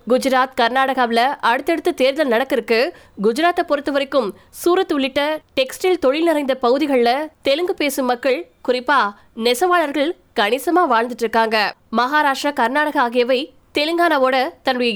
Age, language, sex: 20-39, Tamil, female